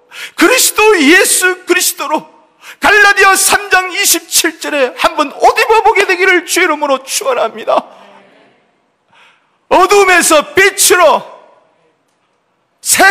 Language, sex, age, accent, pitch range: Korean, male, 40-59, native, 325-415 Hz